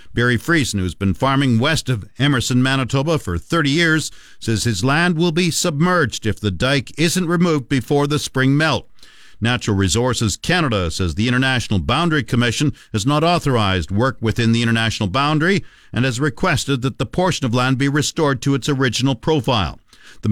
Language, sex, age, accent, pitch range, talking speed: English, male, 50-69, American, 120-155 Hz, 175 wpm